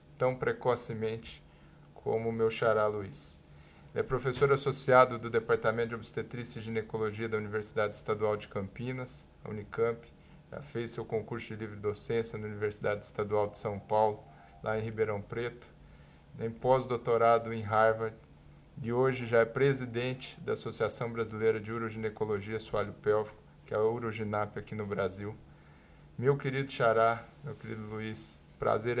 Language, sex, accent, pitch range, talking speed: Portuguese, male, Brazilian, 110-125 Hz, 145 wpm